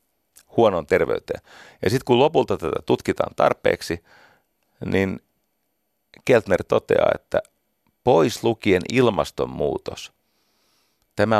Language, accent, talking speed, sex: Finnish, native, 90 wpm, male